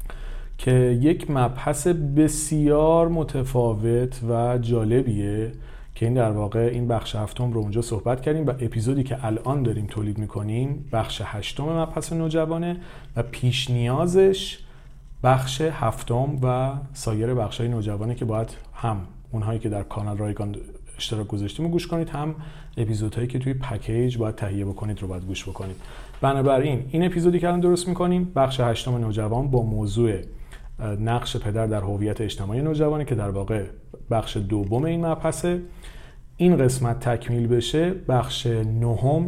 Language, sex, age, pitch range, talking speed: Persian, male, 40-59, 105-135 Hz, 145 wpm